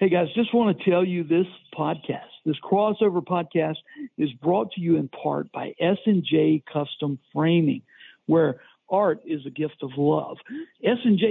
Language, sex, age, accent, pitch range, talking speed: English, male, 60-79, American, 160-215 Hz, 160 wpm